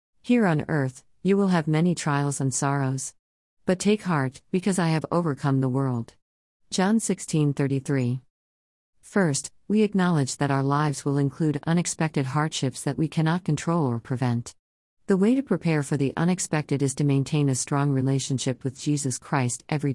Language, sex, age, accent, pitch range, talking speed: English, female, 50-69, American, 130-165 Hz, 160 wpm